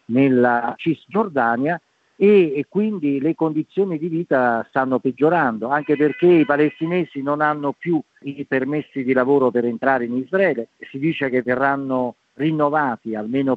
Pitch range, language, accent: 120-150 Hz, Italian, native